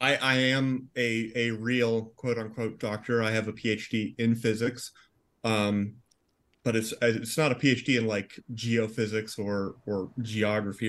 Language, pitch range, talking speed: English, 115-130 Hz, 155 wpm